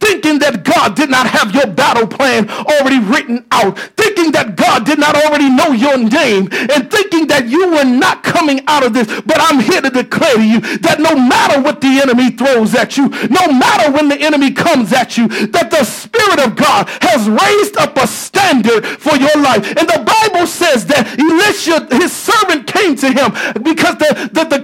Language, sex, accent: English, male, American